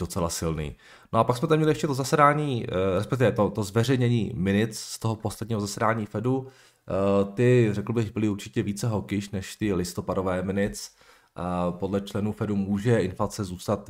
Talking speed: 165 wpm